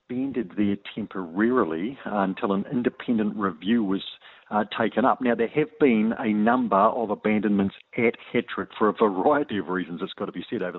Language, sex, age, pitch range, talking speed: English, male, 50-69, 95-115 Hz, 180 wpm